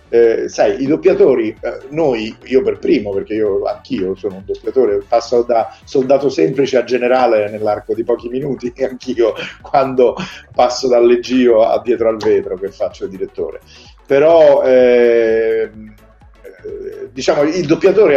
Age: 50-69